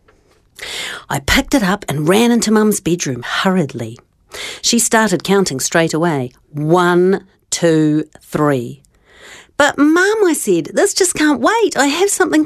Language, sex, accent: English, female, Australian